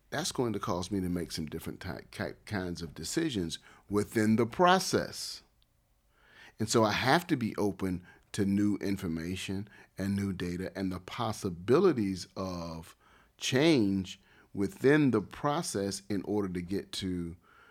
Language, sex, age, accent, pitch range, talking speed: English, male, 40-59, American, 95-120 Hz, 140 wpm